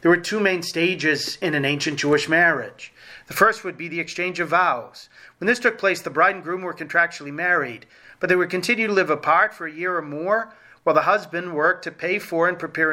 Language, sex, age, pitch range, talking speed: English, male, 40-59, 155-190 Hz, 230 wpm